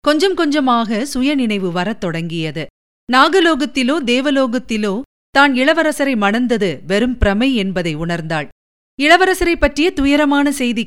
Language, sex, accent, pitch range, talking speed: Tamil, female, native, 205-290 Hz, 100 wpm